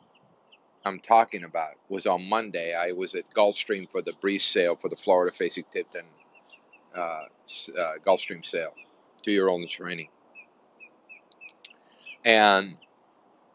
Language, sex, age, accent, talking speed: English, male, 50-69, American, 115 wpm